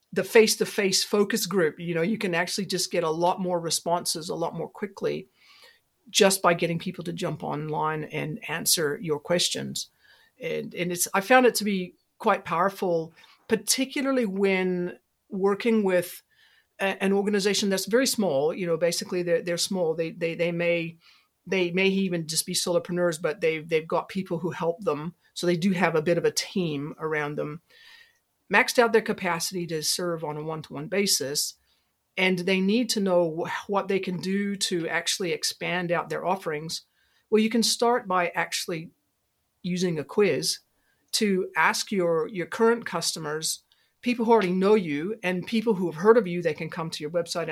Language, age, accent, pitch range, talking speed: English, 50-69, American, 165-210 Hz, 180 wpm